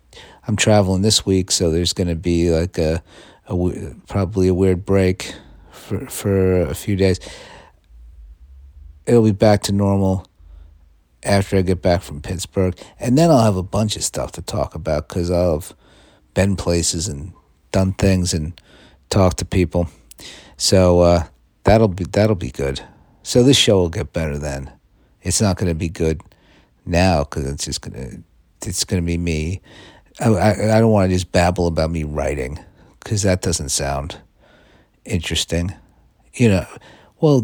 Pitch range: 80-100 Hz